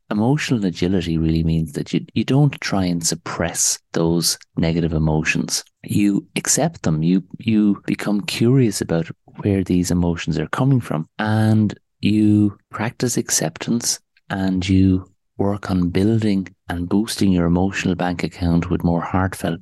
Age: 30-49